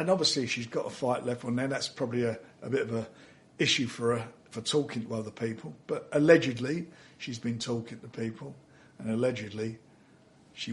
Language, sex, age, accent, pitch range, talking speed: English, male, 50-69, British, 115-140 Hz, 190 wpm